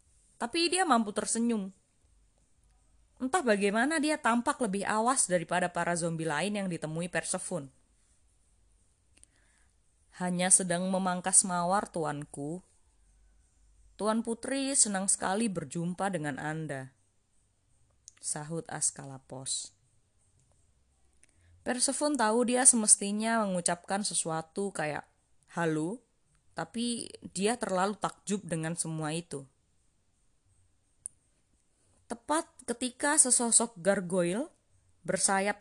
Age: 20-39